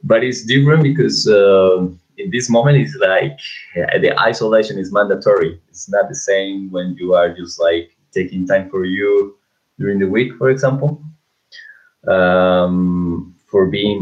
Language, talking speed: English, 150 wpm